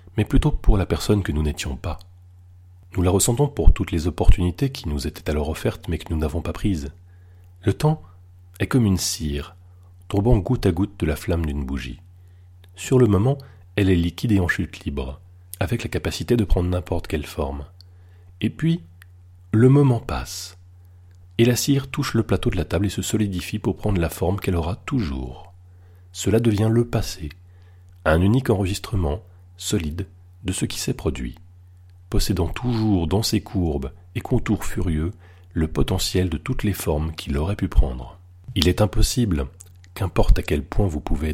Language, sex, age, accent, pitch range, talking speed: French, male, 40-59, French, 85-100 Hz, 180 wpm